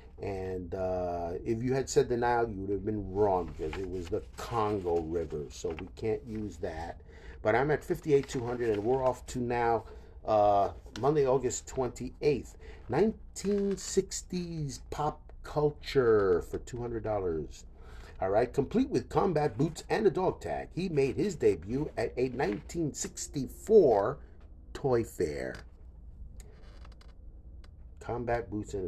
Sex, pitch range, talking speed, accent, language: male, 85-120 Hz, 135 wpm, American, English